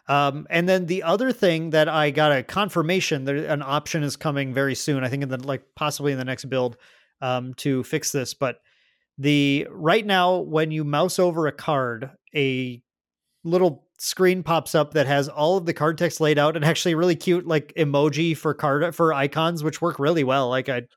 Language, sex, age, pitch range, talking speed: English, male, 30-49, 140-170 Hz, 205 wpm